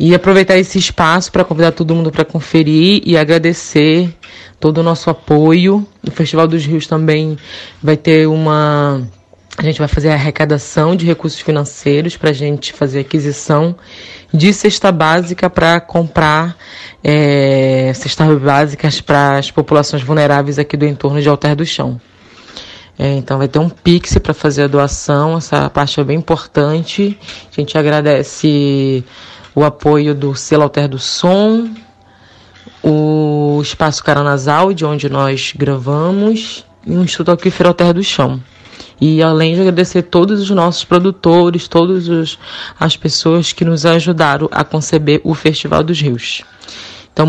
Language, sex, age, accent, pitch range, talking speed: Portuguese, female, 20-39, Brazilian, 145-170 Hz, 150 wpm